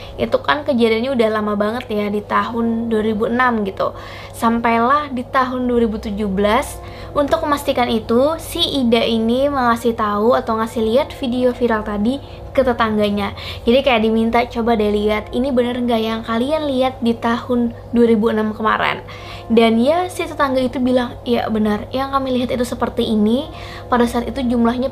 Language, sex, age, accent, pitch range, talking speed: Indonesian, female, 20-39, native, 220-255 Hz, 155 wpm